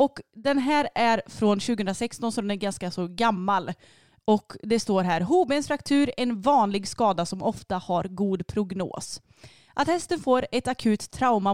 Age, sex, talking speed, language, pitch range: 30-49, female, 165 wpm, Swedish, 190-255 Hz